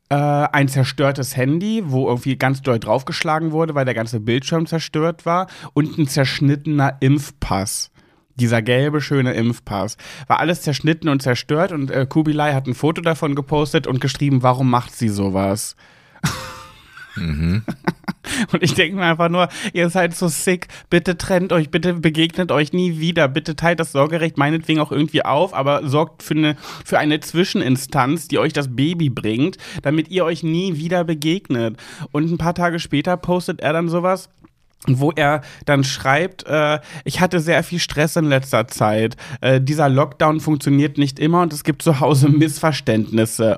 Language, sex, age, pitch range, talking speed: German, male, 30-49, 135-165 Hz, 165 wpm